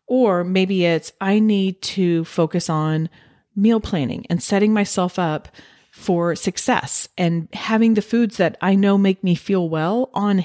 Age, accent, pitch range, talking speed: 40-59, American, 170-225 Hz, 160 wpm